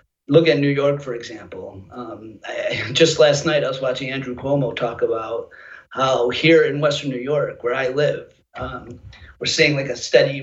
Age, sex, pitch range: 30-49, male, 130-160 Hz